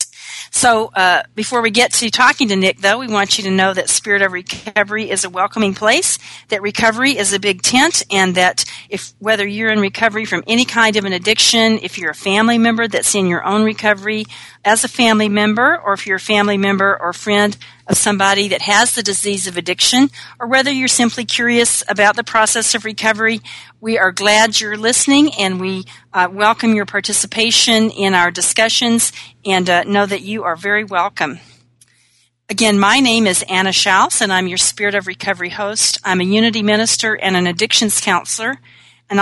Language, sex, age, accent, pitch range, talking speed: English, female, 40-59, American, 185-220 Hz, 190 wpm